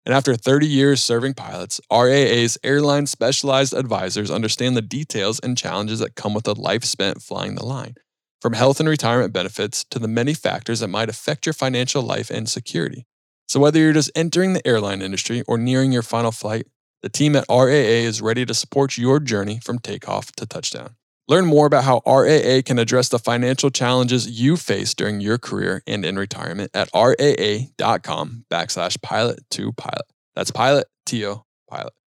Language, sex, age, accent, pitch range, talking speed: English, male, 20-39, American, 110-130 Hz, 180 wpm